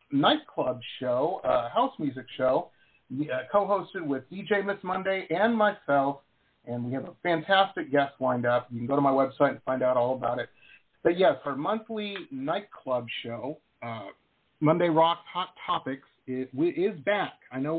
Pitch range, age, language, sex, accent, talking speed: 135-210 Hz, 50-69, English, male, American, 165 wpm